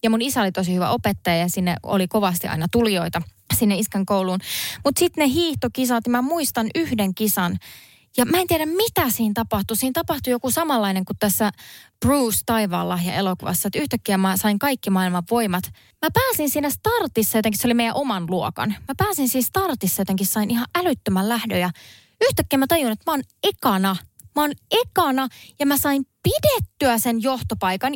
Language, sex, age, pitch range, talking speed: Finnish, female, 20-39, 205-315 Hz, 180 wpm